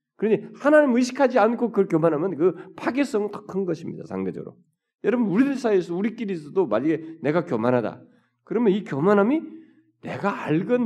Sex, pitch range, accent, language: male, 130-205 Hz, native, Korean